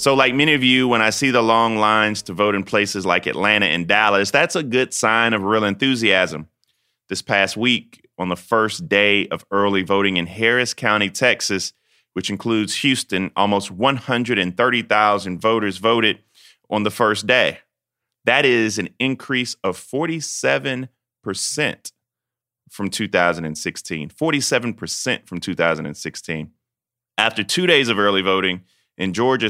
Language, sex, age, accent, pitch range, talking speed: English, male, 30-49, American, 100-125 Hz, 140 wpm